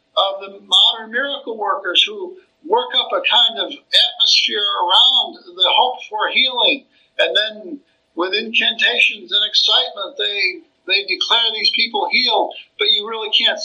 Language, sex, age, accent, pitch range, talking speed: English, male, 60-79, American, 245-330 Hz, 145 wpm